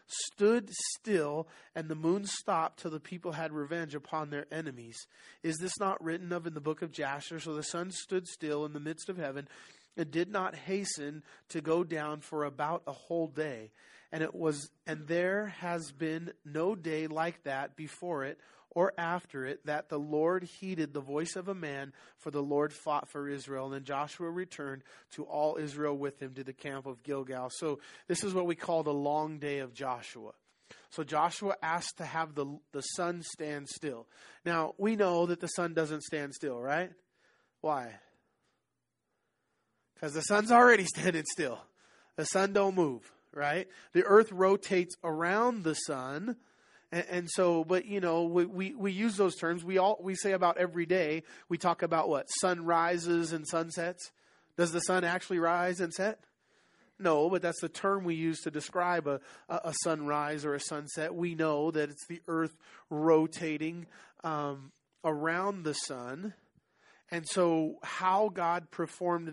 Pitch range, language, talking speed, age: 150-180 Hz, English, 175 wpm, 30-49